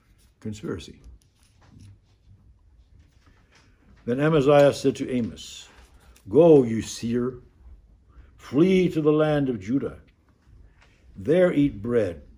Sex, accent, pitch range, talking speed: male, American, 95-130 Hz, 85 wpm